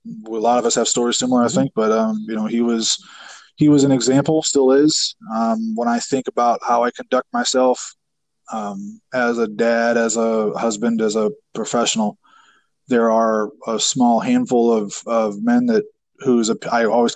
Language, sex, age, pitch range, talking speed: English, male, 20-39, 115-145 Hz, 185 wpm